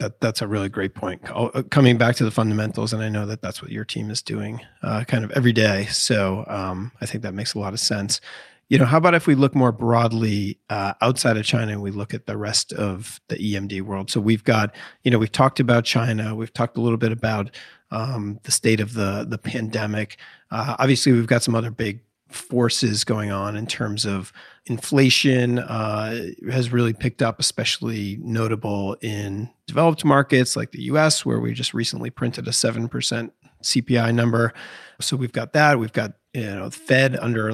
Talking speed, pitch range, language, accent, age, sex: 210 wpm, 105-130 Hz, English, American, 40-59, male